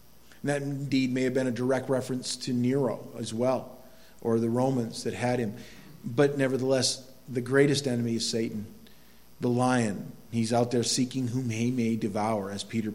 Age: 50-69